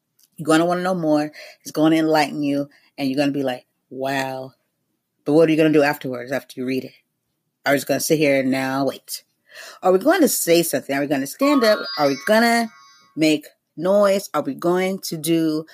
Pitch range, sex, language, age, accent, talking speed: 140-185 Hz, female, English, 30-49, American, 245 wpm